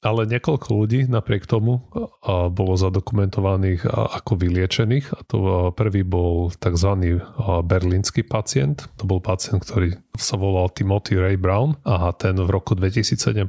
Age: 30-49